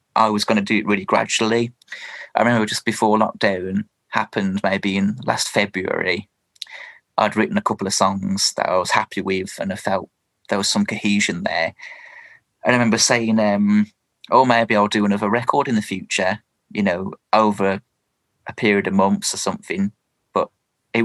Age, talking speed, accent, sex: 20-39, 175 wpm, British, male